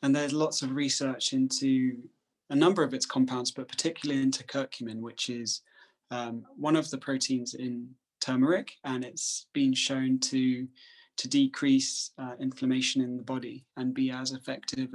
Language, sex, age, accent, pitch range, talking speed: English, male, 20-39, British, 130-155 Hz, 160 wpm